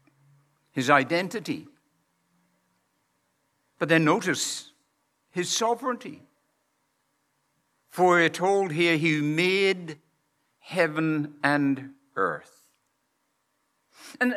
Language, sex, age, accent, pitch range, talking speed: English, male, 60-79, American, 155-230 Hz, 75 wpm